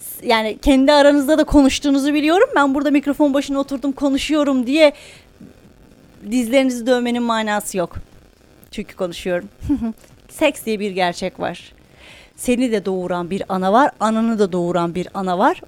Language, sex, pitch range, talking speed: Turkish, female, 195-260 Hz, 140 wpm